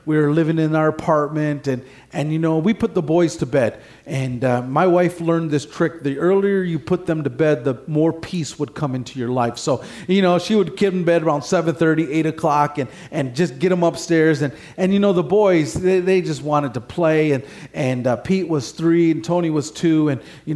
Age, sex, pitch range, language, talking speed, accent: 40-59, male, 145-175 Hz, English, 235 wpm, American